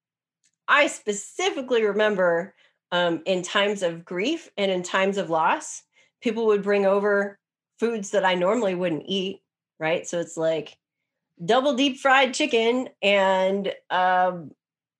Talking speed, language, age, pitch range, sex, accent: 130 wpm, English, 30-49, 175-235 Hz, female, American